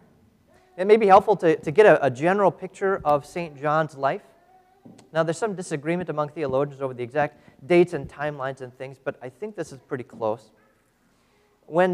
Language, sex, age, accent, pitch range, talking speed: English, male, 30-49, American, 145-190 Hz, 185 wpm